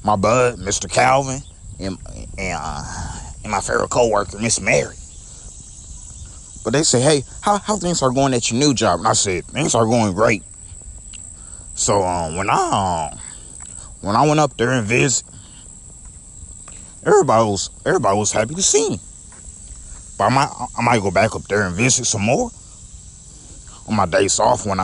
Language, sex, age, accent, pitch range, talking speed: English, male, 30-49, American, 95-135 Hz, 175 wpm